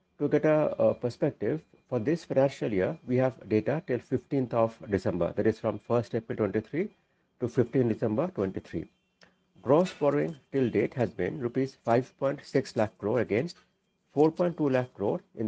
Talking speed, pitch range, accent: 160 wpm, 110-160 Hz, Indian